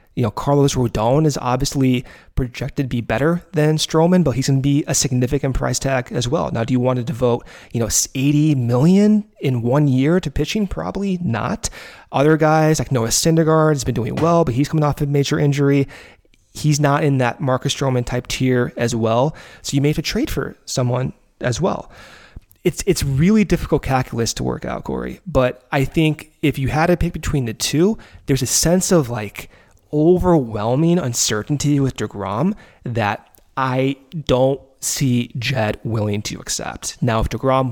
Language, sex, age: English, male, 30-49